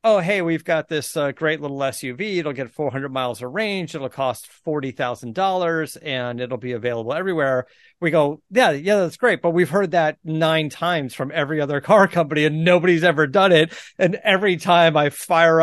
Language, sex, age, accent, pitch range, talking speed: English, male, 40-59, American, 135-180 Hz, 190 wpm